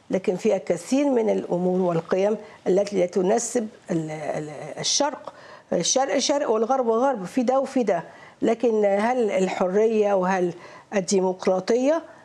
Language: Arabic